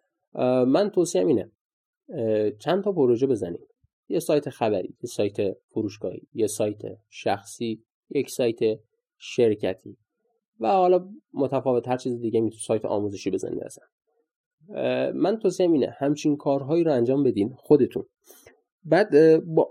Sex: male